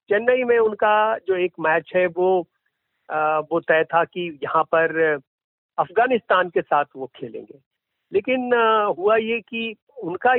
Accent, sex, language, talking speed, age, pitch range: native, male, Hindi, 150 wpm, 50-69, 175-240 Hz